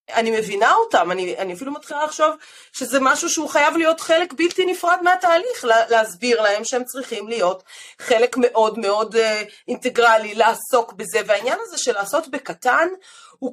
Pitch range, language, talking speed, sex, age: 220-345 Hz, Hebrew, 155 wpm, female, 30-49